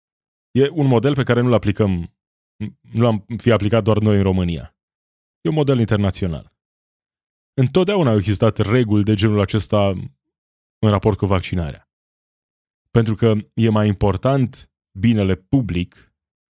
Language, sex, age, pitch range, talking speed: Romanian, male, 20-39, 95-120 Hz, 130 wpm